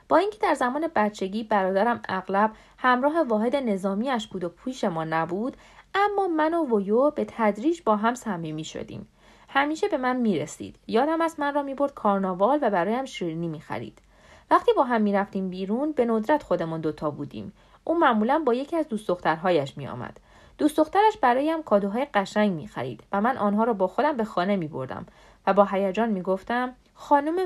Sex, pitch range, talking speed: female, 195-275 Hz, 180 wpm